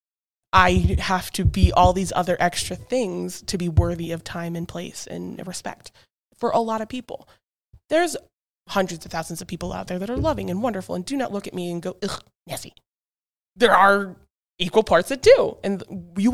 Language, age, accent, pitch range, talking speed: English, 20-39, American, 175-215 Hz, 200 wpm